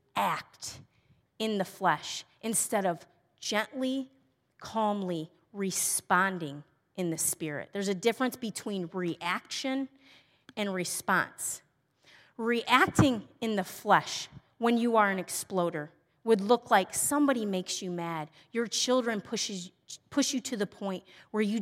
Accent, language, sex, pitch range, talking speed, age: American, English, female, 180-245 Hz, 125 wpm, 30-49